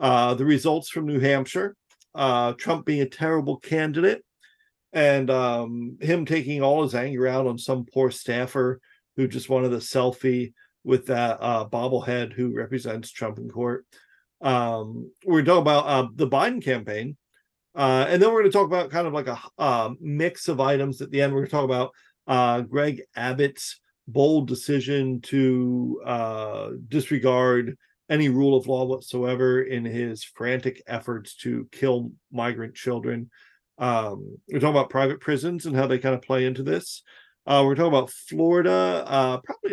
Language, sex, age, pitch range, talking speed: English, male, 40-59, 125-150 Hz, 170 wpm